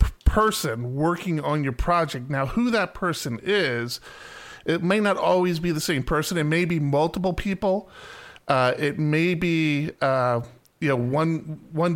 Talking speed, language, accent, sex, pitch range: 160 wpm, English, American, male, 140-180 Hz